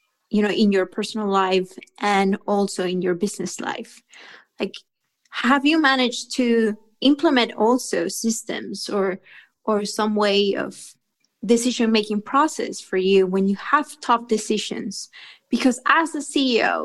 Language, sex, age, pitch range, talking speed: English, female, 20-39, 195-240 Hz, 140 wpm